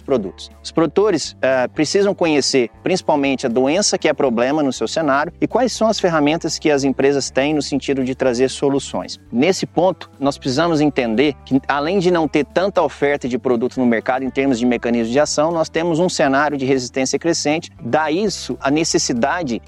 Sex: male